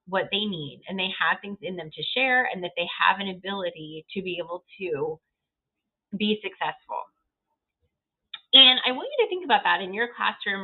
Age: 30-49